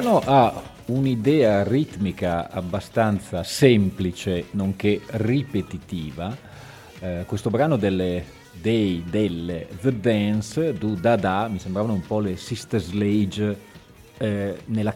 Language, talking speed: Italian, 110 wpm